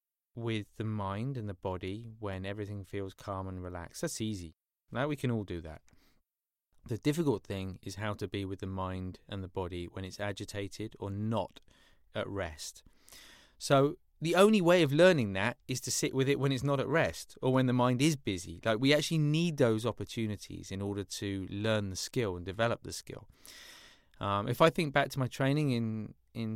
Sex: male